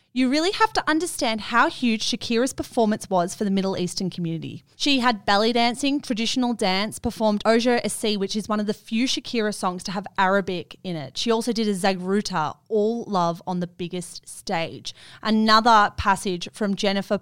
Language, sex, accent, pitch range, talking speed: English, female, Australian, 180-220 Hz, 180 wpm